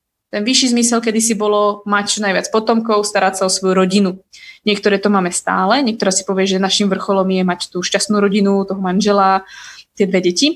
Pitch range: 195-225 Hz